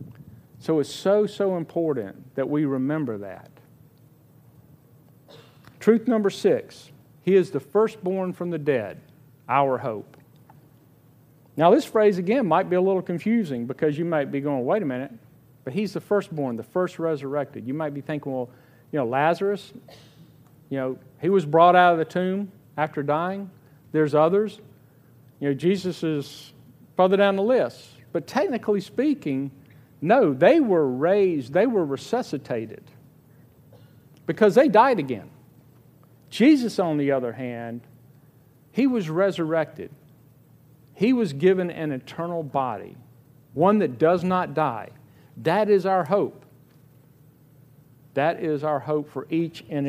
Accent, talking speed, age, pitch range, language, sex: American, 140 wpm, 50-69, 135-185 Hz, English, male